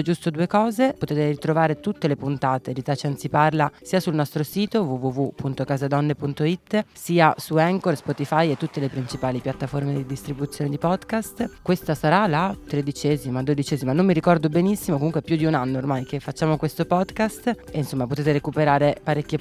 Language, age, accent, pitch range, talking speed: Italian, 30-49, native, 135-170 Hz, 165 wpm